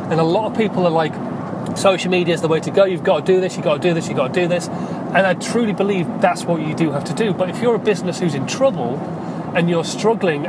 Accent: British